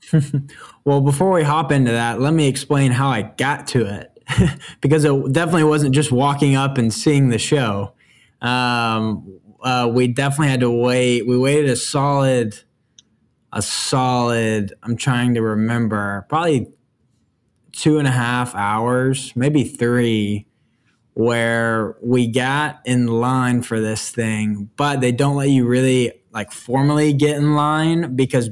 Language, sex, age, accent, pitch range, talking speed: English, male, 10-29, American, 115-140 Hz, 145 wpm